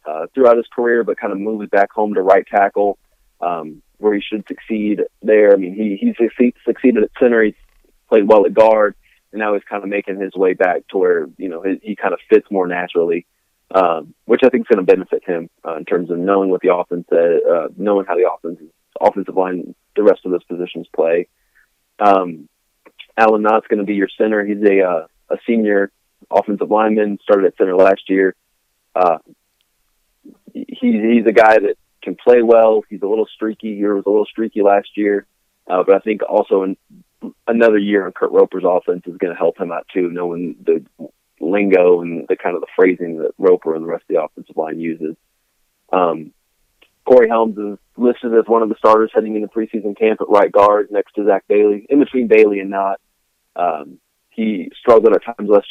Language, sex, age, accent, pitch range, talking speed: English, male, 30-49, American, 100-120 Hz, 210 wpm